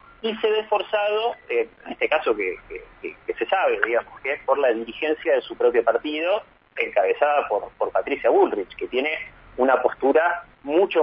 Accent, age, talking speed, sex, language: Argentinian, 30-49, 180 wpm, male, Spanish